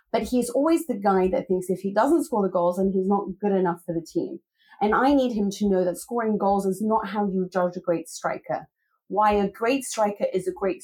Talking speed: 250 wpm